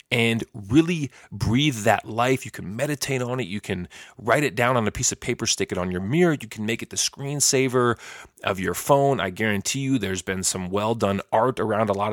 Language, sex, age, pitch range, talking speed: English, male, 30-49, 105-130 Hz, 225 wpm